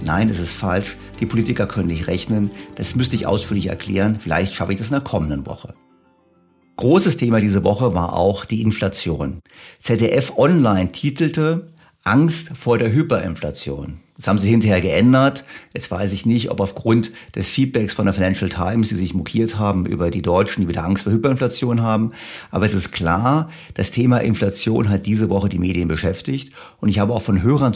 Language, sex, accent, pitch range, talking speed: German, male, German, 95-125 Hz, 185 wpm